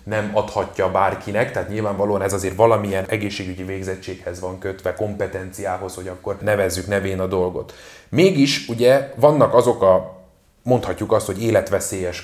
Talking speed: 135 wpm